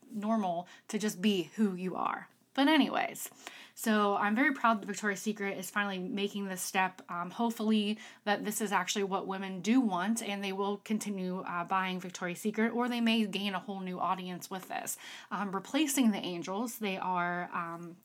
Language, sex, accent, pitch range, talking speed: English, female, American, 185-215 Hz, 185 wpm